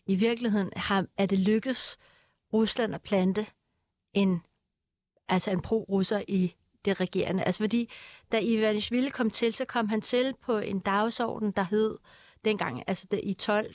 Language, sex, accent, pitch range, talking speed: Danish, female, native, 190-225 Hz, 155 wpm